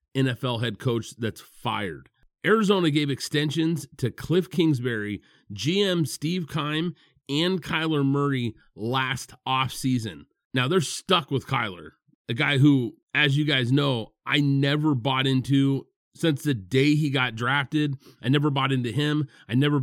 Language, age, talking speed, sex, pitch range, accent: English, 30-49, 145 wpm, male, 125-150 Hz, American